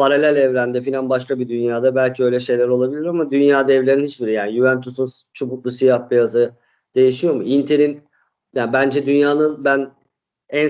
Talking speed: 150 wpm